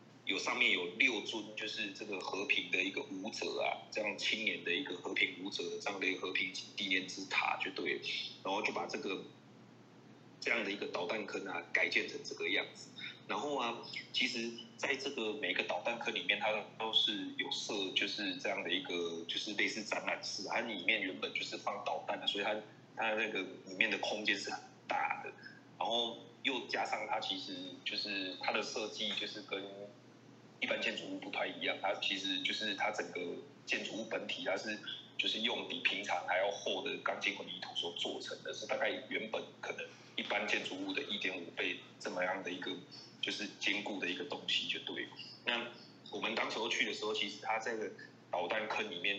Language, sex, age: Chinese, male, 20-39